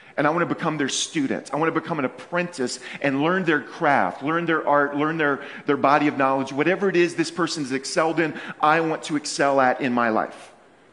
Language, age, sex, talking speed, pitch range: English, 40-59, male, 230 wpm, 150-200 Hz